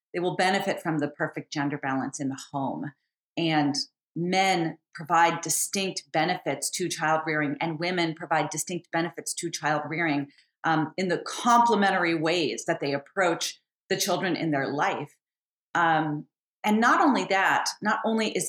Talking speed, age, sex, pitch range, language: 155 wpm, 40-59, female, 150-185 Hz, English